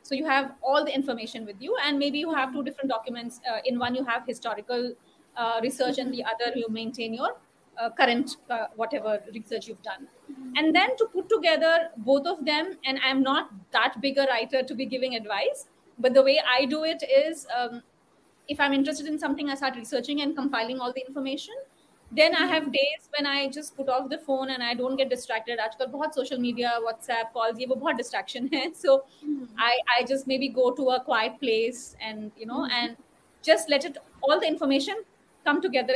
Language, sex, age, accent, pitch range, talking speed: Hindi, female, 30-49, native, 245-300 Hz, 215 wpm